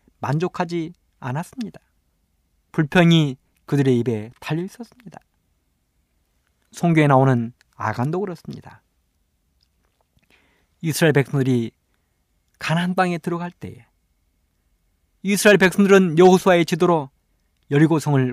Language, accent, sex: Korean, native, male